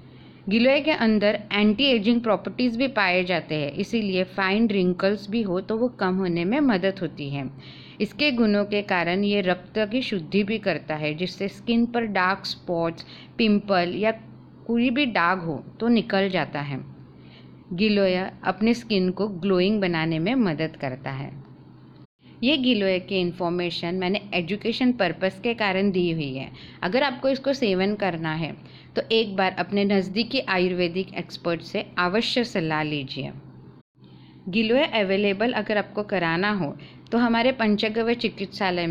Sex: female